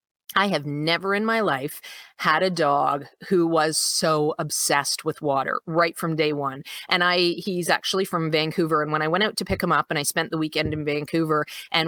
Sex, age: female, 30-49